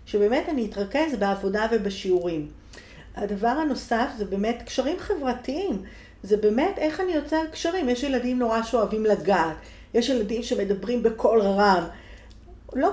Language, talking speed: Hebrew, 130 wpm